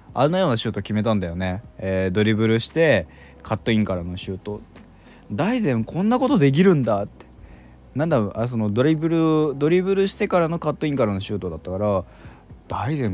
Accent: native